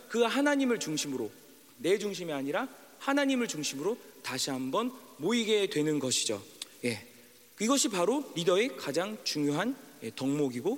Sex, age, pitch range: male, 40-59, 145-230 Hz